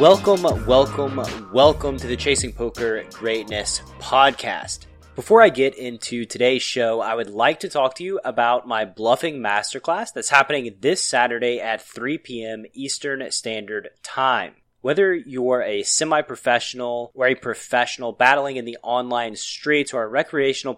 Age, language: 20-39, English